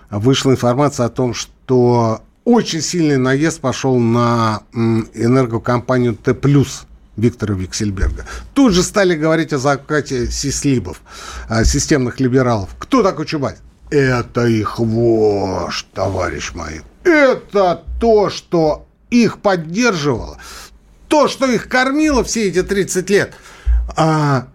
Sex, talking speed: male, 110 wpm